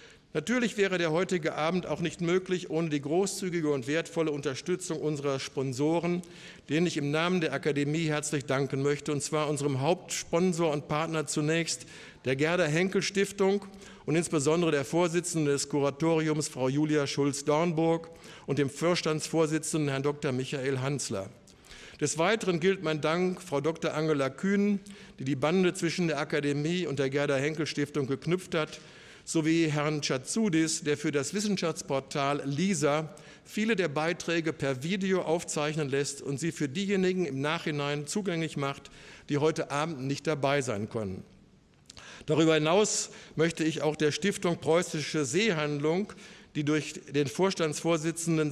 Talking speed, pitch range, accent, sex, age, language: 140 wpm, 145-170 Hz, German, male, 60-79, German